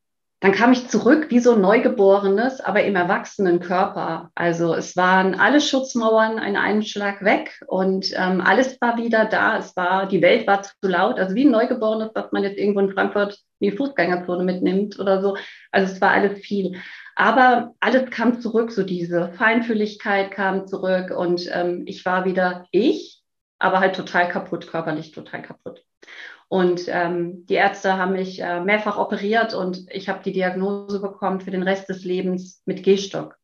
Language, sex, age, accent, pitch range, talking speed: German, female, 30-49, German, 180-210 Hz, 175 wpm